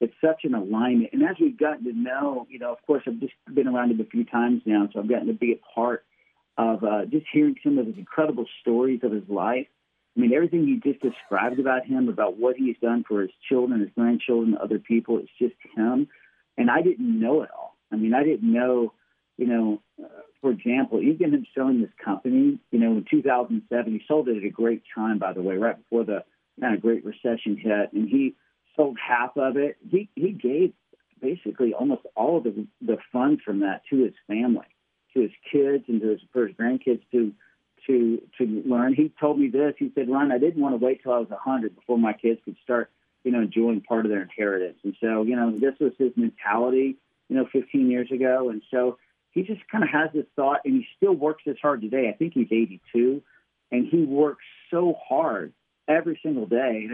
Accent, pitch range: American, 115-160 Hz